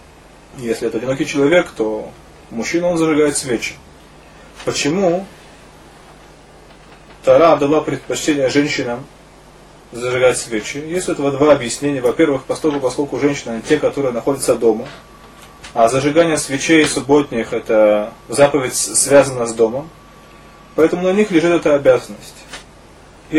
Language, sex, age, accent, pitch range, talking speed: Russian, male, 20-39, native, 130-160 Hz, 115 wpm